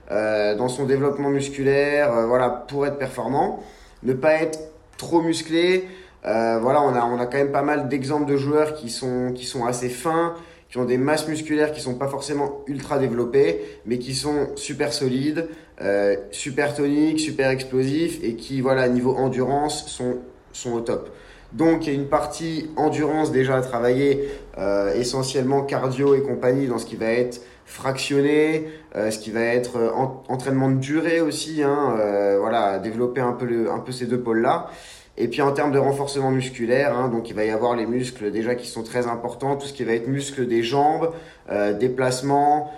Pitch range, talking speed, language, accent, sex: 125-150 Hz, 190 wpm, French, French, male